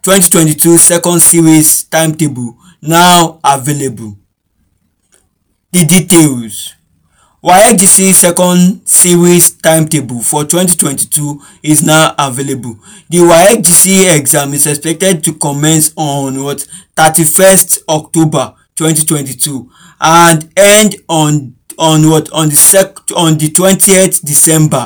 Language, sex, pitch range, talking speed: English, male, 145-170 Hz, 100 wpm